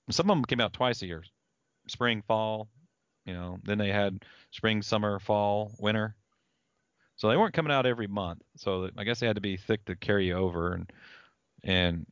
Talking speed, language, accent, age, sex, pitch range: 195 wpm, English, American, 40-59, male, 95-120 Hz